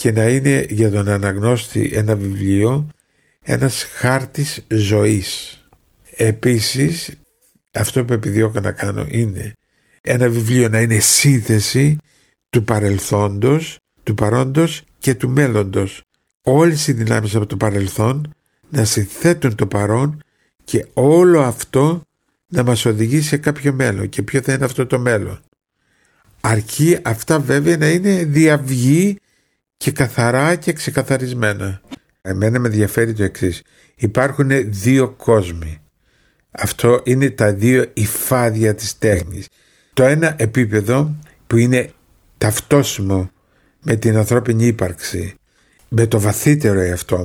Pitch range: 105-140 Hz